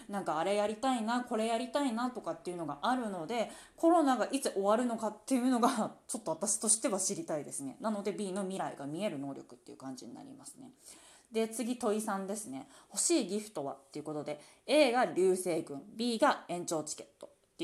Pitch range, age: 170-275 Hz, 20-39